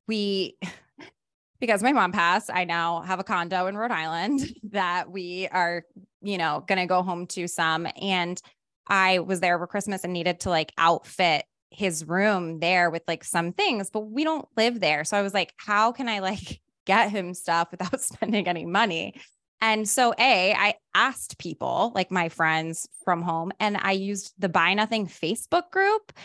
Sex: female